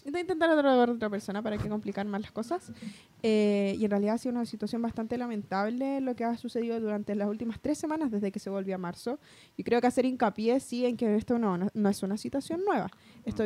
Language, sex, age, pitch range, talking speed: Spanish, female, 10-29, 210-260 Hz, 230 wpm